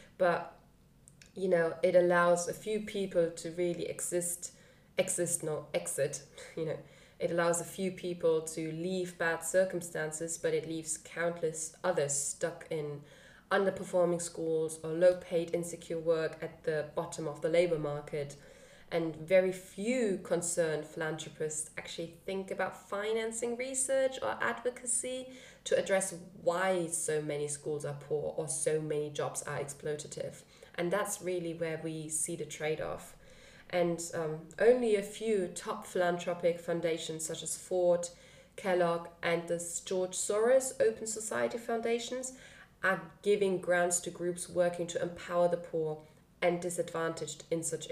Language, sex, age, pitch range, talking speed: English, female, 20-39, 160-185 Hz, 145 wpm